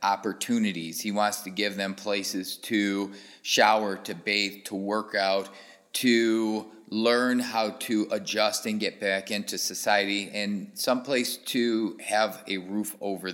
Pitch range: 95-115 Hz